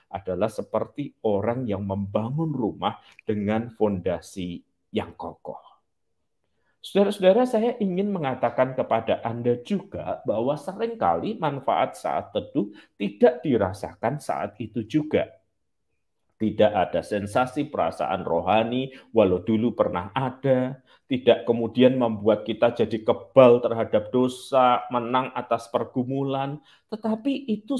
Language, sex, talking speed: Malay, male, 105 wpm